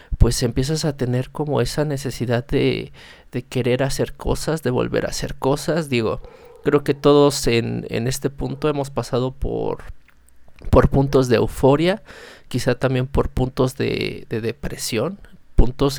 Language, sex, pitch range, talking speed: Spanish, male, 120-150 Hz, 150 wpm